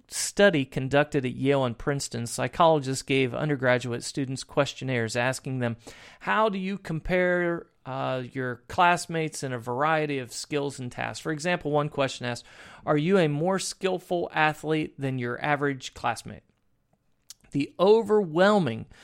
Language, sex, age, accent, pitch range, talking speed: English, male, 40-59, American, 130-165 Hz, 140 wpm